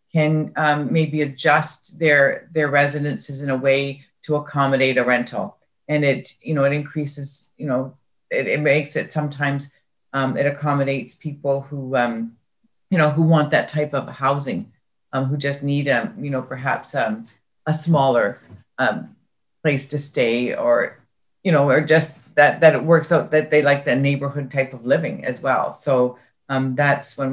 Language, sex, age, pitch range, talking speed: English, female, 40-59, 140-170 Hz, 175 wpm